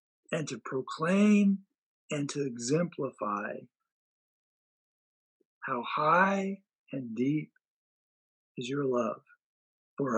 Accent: American